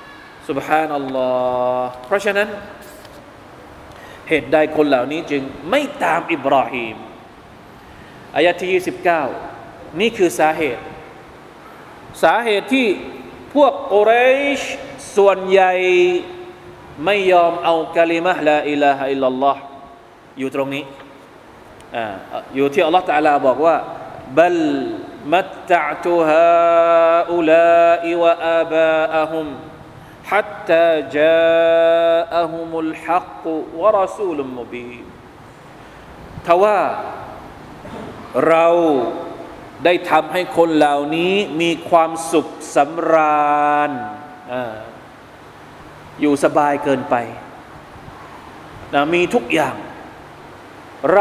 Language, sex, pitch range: Thai, male, 150-205 Hz